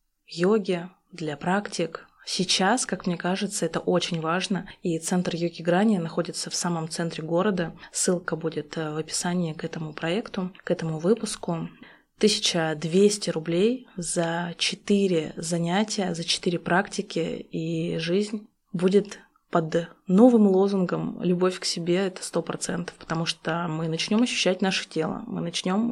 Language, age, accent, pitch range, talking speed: Russian, 20-39, native, 170-200 Hz, 135 wpm